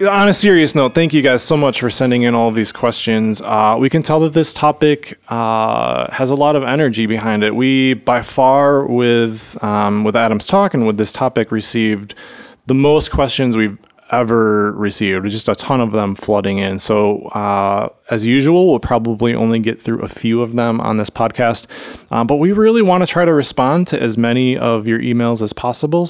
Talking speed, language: 205 wpm, English